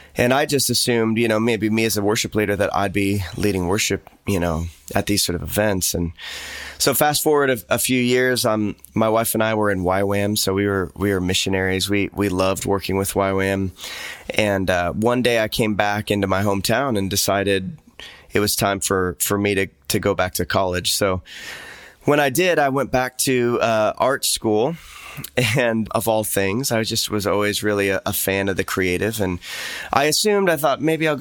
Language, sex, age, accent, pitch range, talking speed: English, male, 20-39, American, 95-120 Hz, 210 wpm